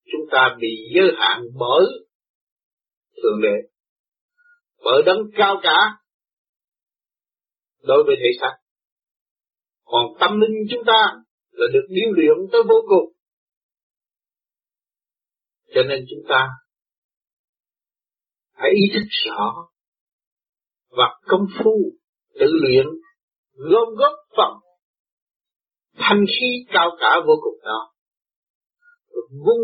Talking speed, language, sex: 105 wpm, Vietnamese, male